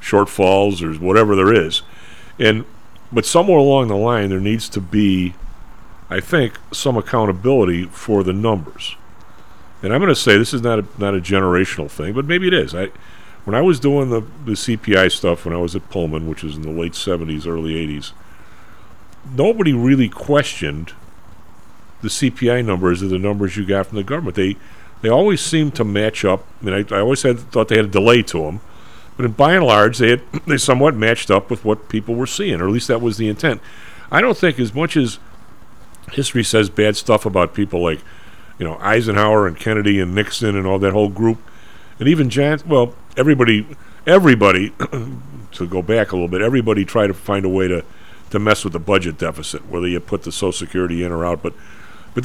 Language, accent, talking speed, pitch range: English, American, 205 wpm, 95-130 Hz